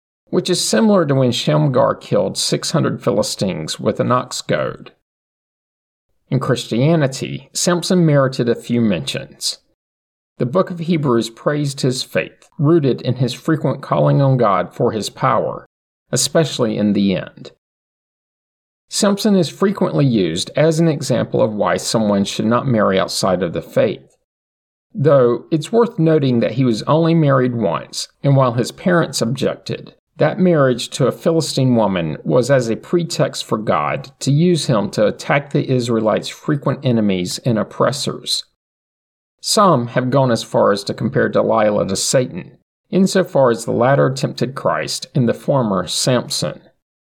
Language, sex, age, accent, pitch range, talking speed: English, male, 50-69, American, 115-165 Hz, 150 wpm